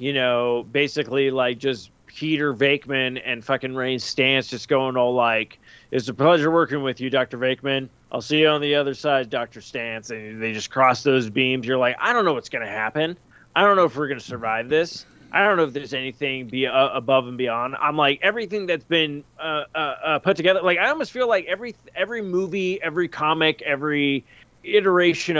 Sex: male